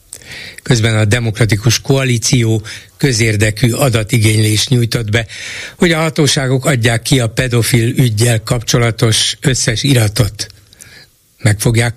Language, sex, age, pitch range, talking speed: Hungarian, male, 60-79, 110-135 Hz, 105 wpm